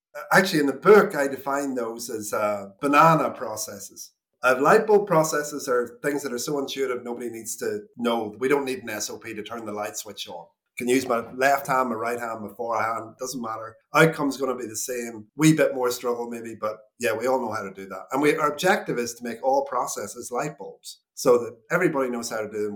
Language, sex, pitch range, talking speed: English, male, 115-150 Hz, 230 wpm